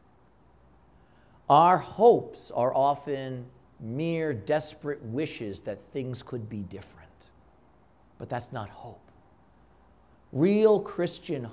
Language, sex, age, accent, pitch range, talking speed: English, male, 50-69, American, 110-160 Hz, 95 wpm